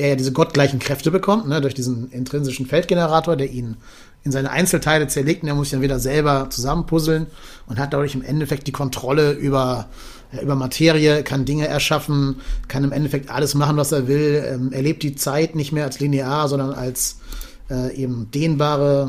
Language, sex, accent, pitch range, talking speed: German, male, German, 135-155 Hz, 185 wpm